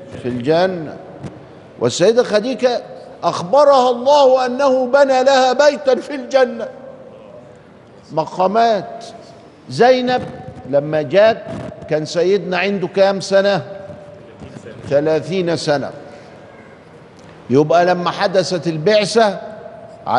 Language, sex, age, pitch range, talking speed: Arabic, male, 50-69, 160-220 Hz, 80 wpm